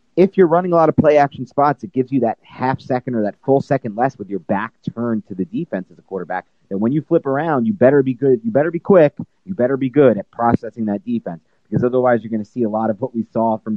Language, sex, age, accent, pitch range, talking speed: English, male, 30-49, American, 100-130 Hz, 270 wpm